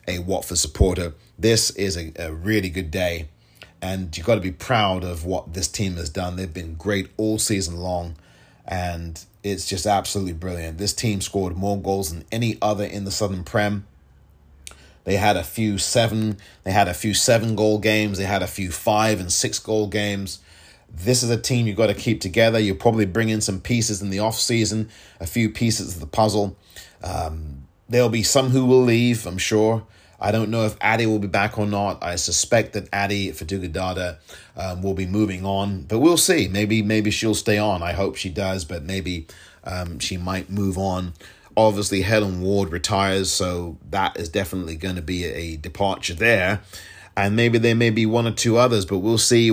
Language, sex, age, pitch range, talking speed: English, male, 30-49, 90-110 Hz, 200 wpm